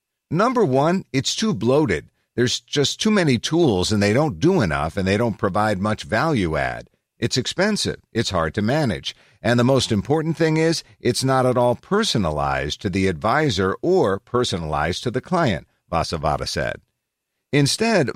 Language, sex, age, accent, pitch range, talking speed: English, male, 50-69, American, 95-130 Hz, 165 wpm